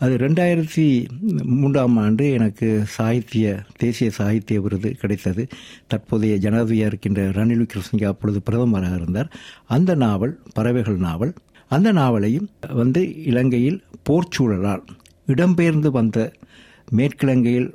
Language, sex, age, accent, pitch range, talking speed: Tamil, male, 60-79, native, 105-140 Hz, 100 wpm